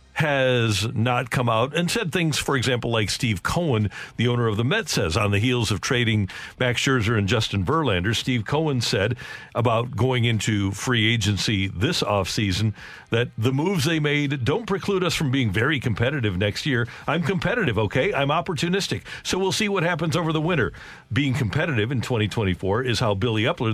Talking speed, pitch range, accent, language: 185 wpm, 110-150 Hz, American, English